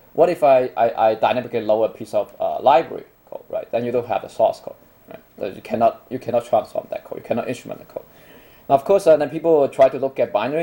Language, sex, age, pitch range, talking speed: English, male, 20-39, 115-145 Hz, 260 wpm